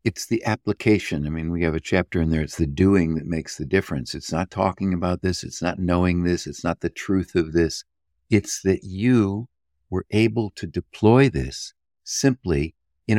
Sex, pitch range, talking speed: male, 80-100 Hz, 195 wpm